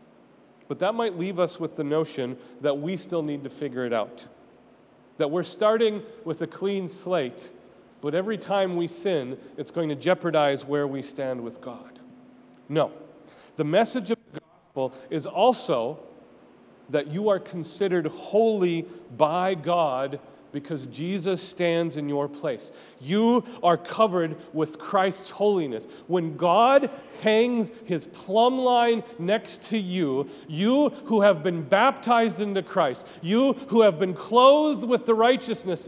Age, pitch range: 40-59, 155-220 Hz